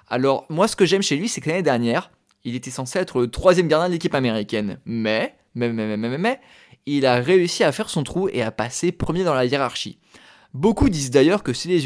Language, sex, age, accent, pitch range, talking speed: French, male, 20-39, French, 130-185 Hz, 240 wpm